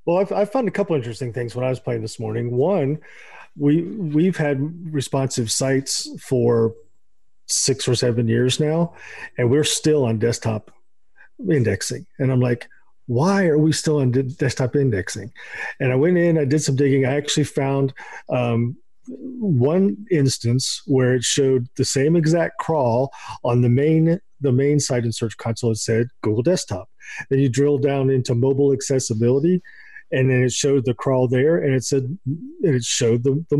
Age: 40-59